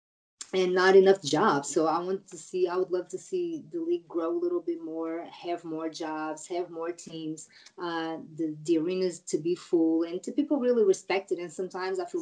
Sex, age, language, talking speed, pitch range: female, 20-39, English, 215 wpm, 160-190 Hz